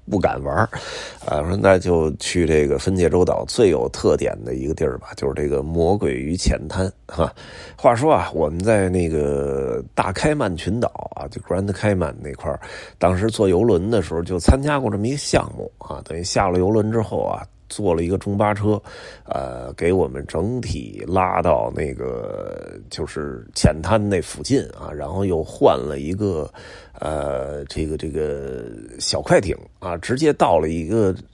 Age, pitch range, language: 30-49, 85-110 Hz, Chinese